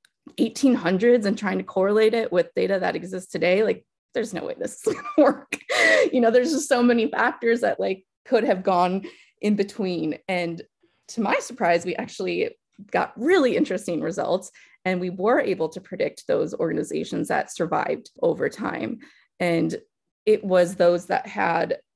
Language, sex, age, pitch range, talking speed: English, female, 20-39, 175-250 Hz, 165 wpm